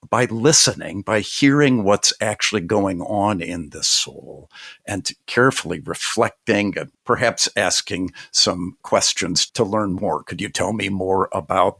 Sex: male